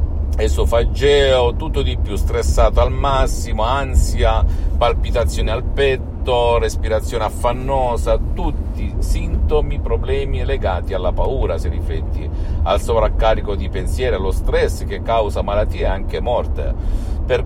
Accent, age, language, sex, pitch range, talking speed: native, 50-69, Italian, male, 75-95 Hz, 115 wpm